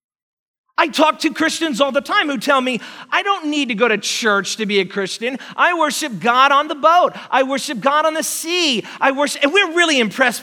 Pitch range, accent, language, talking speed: 255-360 Hz, American, English, 225 wpm